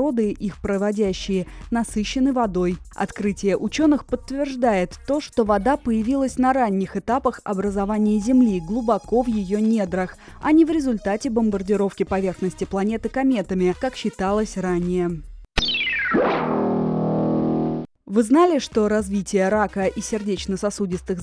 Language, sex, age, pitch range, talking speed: Russian, female, 20-39, 195-255 Hz, 105 wpm